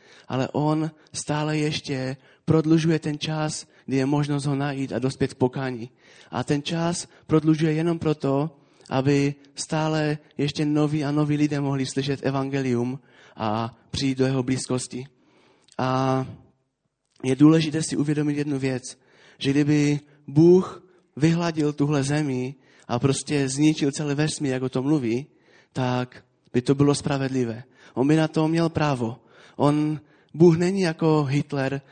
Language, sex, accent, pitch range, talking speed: Czech, male, native, 130-150 Hz, 140 wpm